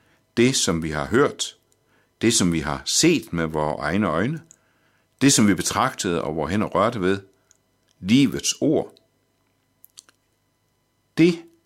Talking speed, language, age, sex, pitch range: 135 wpm, Danish, 60-79, male, 80-110 Hz